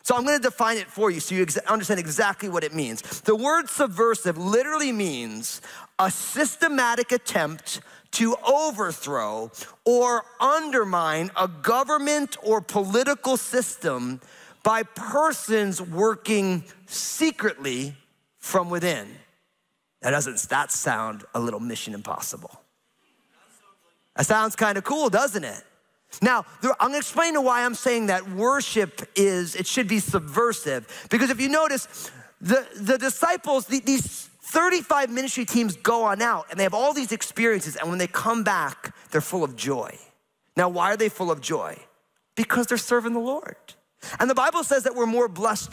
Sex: male